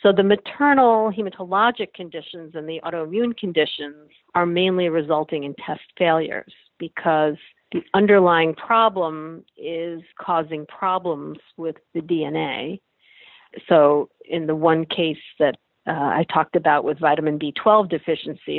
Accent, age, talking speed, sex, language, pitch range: American, 50-69, 125 wpm, female, English, 155-185 Hz